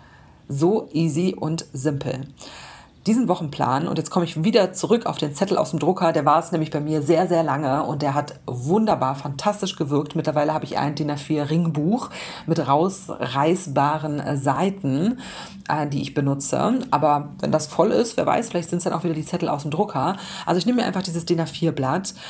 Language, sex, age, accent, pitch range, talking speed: German, female, 40-59, German, 145-185 Hz, 195 wpm